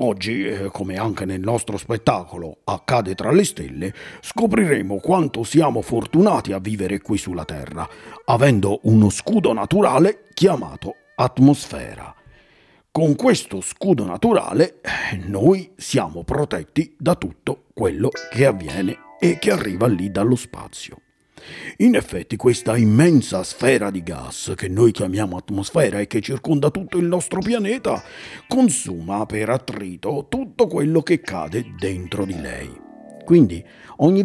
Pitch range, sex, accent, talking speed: 100-140 Hz, male, native, 130 wpm